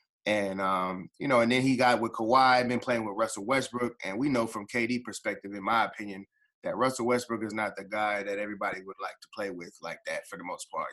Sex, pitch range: male, 110-130 Hz